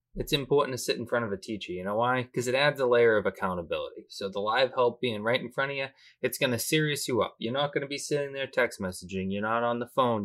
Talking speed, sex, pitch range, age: 285 wpm, male, 110-135 Hz, 20-39